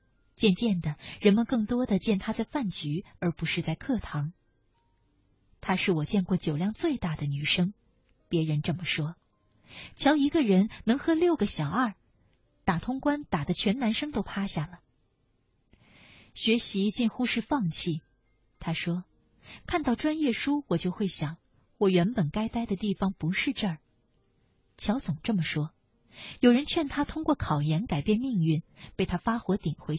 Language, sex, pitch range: Chinese, female, 150-225 Hz